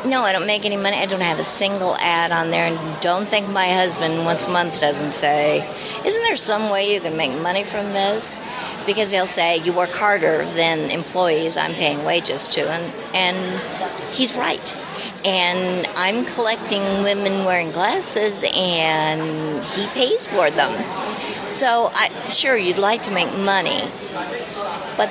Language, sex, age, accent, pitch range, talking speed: English, female, 50-69, American, 170-210 Hz, 165 wpm